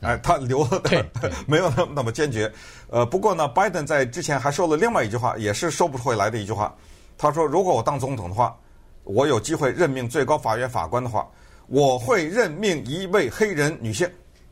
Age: 50-69